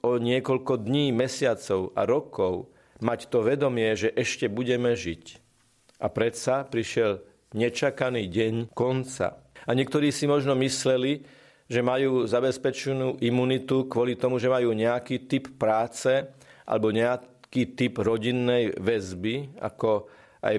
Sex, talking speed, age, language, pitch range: male, 120 wpm, 50-69, Slovak, 115-135 Hz